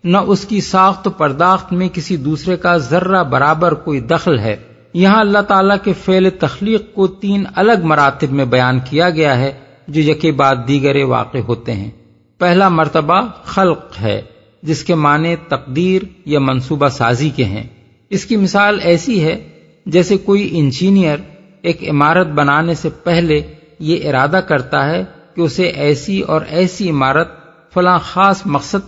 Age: 50-69